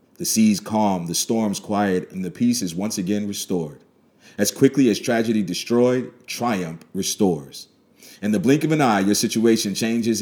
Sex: male